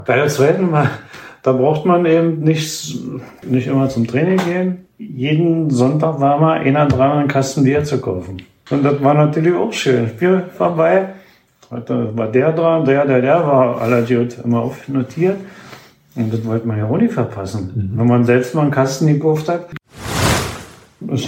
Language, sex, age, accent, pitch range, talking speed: German, male, 50-69, German, 115-155 Hz, 175 wpm